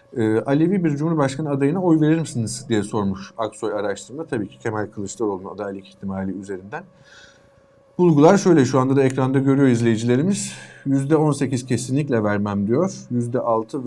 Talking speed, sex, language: 135 wpm, male, Turkish